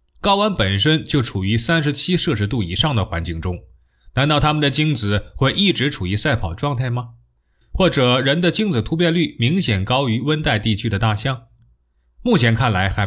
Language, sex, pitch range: Chinese, male, 95-145 Hz